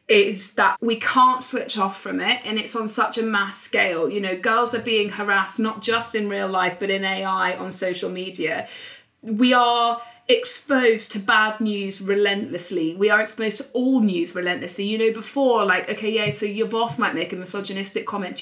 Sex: female